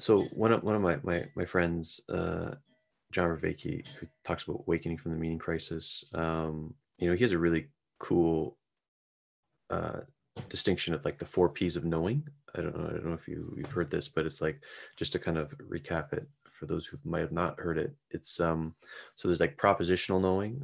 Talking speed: 210 wpm